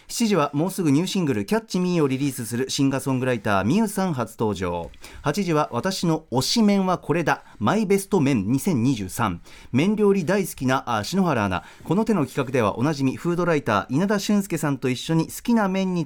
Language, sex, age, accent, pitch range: Japanese, male, 40-59, native, 130-195 Hz